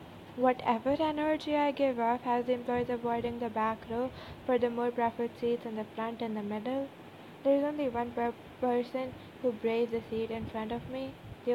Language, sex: English, female